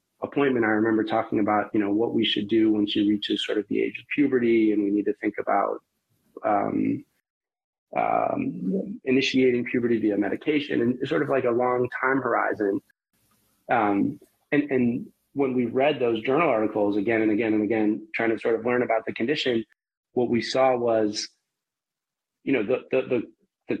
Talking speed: 180 wpm